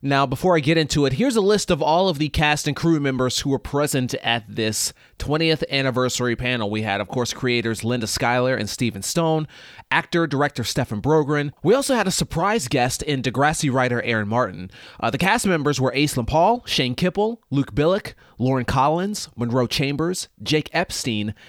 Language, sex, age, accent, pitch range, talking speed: English, male, 30-49, American, 115-150 Hz, 185 wpm